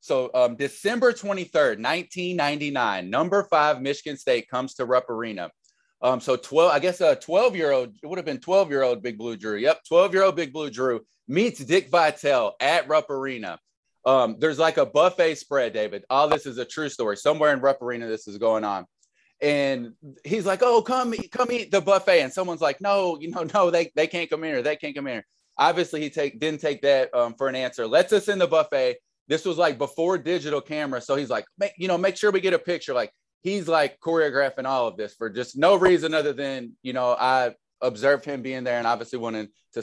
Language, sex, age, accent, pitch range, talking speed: English, male, 30-49, American, 125-185 Hz, 225 wpm